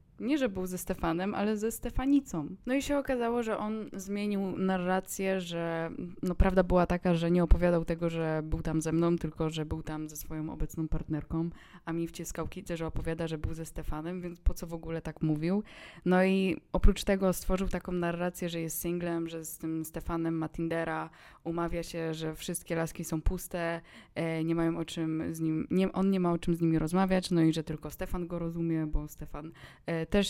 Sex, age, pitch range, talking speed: female, 20-39, 160-190 Hz, 200 wpm